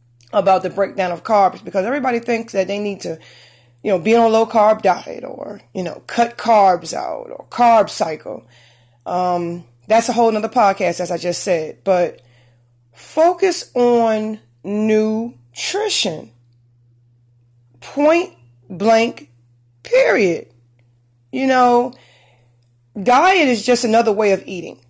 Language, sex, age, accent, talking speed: English, female, 30-49, American, 135 wpm